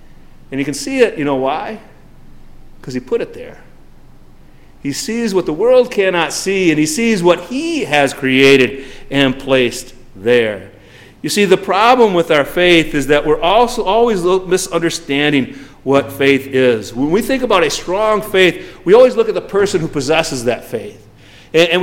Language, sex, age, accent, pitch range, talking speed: English, male, 40-59, American, 140-220 Hz, 175 wpm